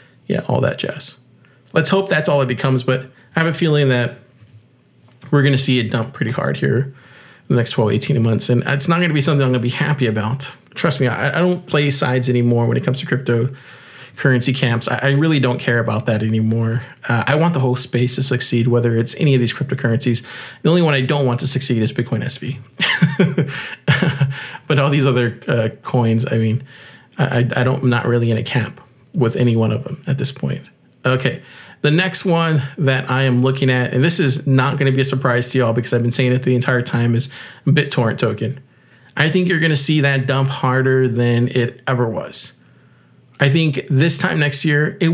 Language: English